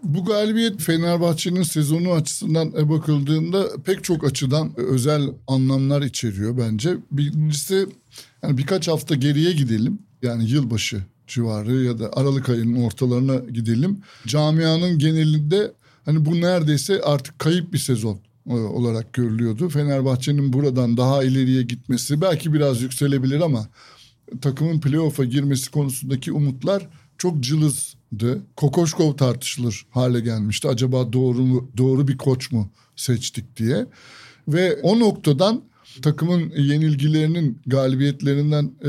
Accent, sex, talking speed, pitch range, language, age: native, male, 115 wpm, 125-155 Hz, Turkish, 60-79